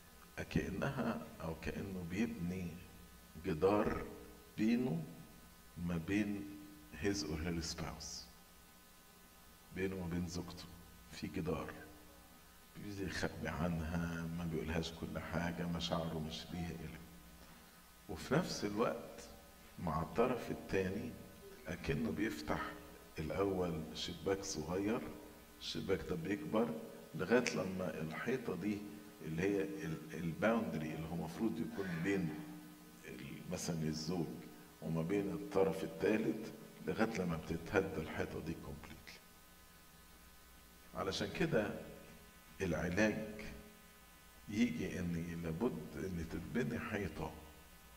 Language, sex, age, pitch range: English, male, 50-69, 80-90 Hz